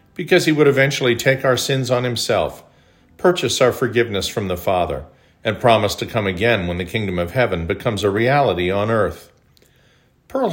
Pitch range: 95-120 Hz